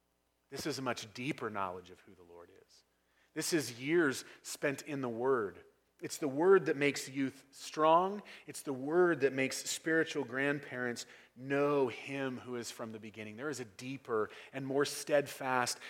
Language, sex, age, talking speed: English, male, 30-49, 175 wpm